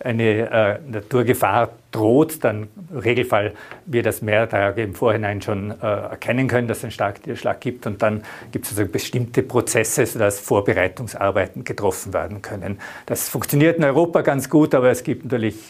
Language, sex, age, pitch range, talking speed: German, male, 50-69, 105-130 Hz, 170 wpm